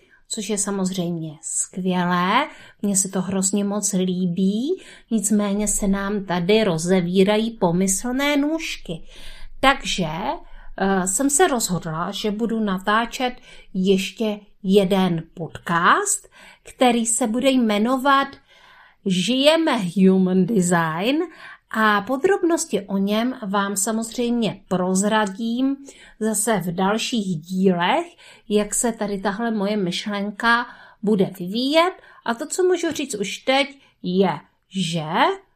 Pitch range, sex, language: 190-250 Hz, female, Czech